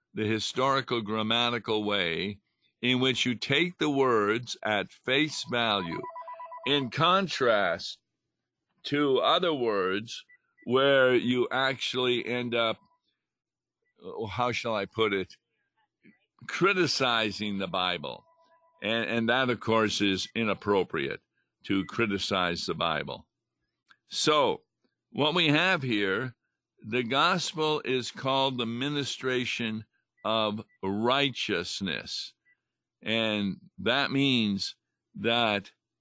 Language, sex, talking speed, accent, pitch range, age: English, male, 100 wpm, American, 110-135 Hz, 50-69